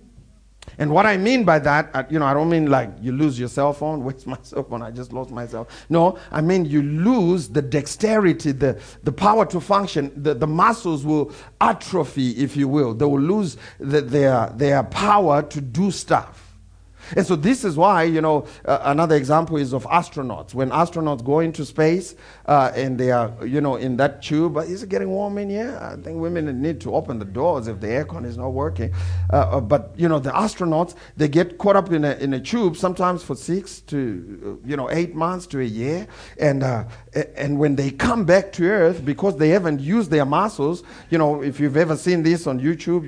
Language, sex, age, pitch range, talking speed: English, male, 50-69, 135-175 Hz, 215 wpm